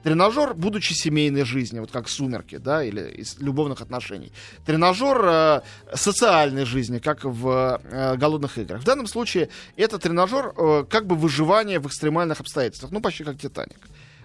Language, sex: Russian, male